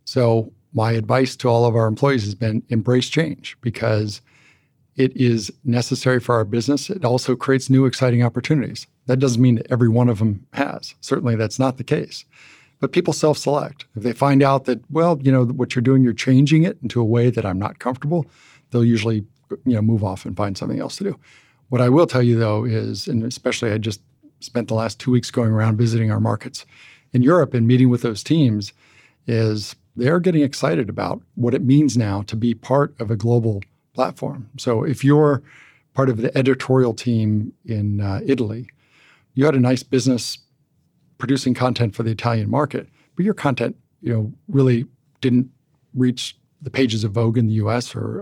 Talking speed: 195 wpm